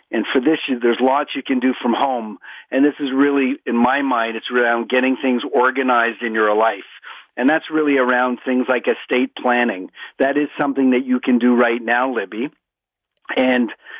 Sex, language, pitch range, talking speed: male, English, 120-135 Hz, 190 wpm